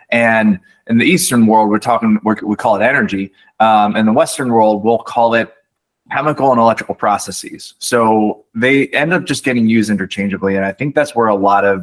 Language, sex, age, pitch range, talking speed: English, male, 20-39, 100-115 Hz, 200 wpm